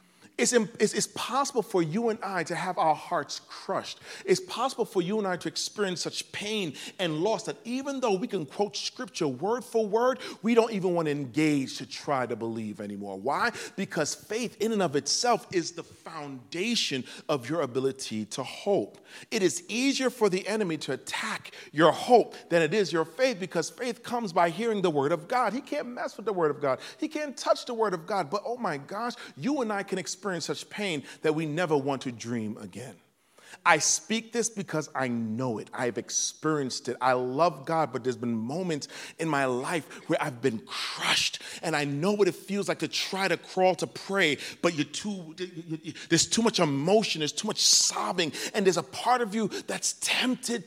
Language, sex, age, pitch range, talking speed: English, male, 40-59, 150-220 Hz, 205 wpm